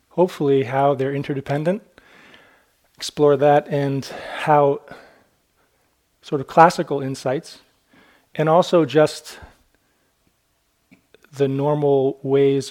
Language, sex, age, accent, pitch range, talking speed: English, male, 30-49, American, 130-150 Hz, 85 wpm